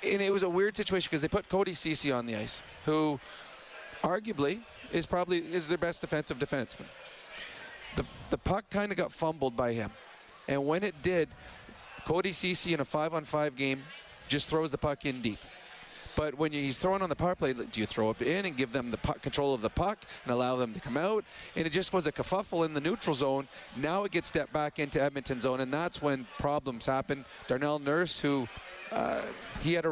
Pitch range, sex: 140-175 Hz, male